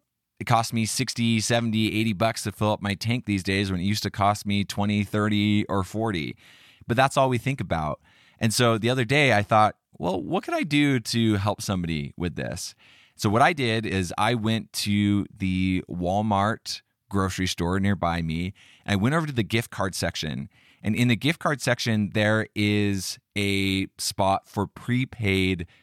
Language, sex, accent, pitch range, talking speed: English, male, American, 90-115 Hz, 190 wpm